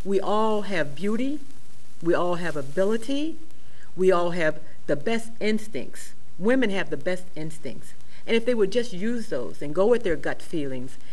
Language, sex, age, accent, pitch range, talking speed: English, female, 50-69, American, 175-225 Hz, 175 wpm